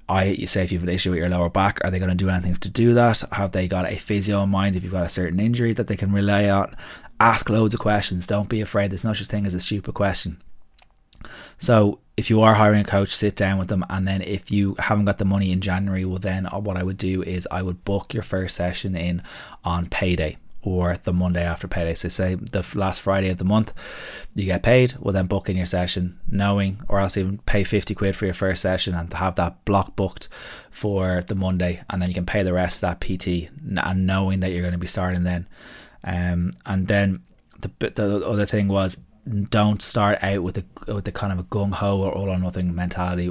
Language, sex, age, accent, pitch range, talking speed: English, male, 20-39, Irish, 90-100 Hz, 240 wpm